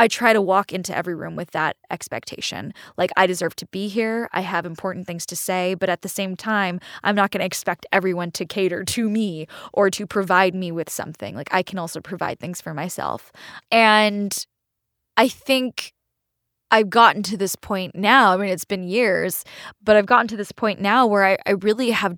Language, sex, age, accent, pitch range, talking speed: English, female, 10-29, American, 180-210 Hz, 210 wpm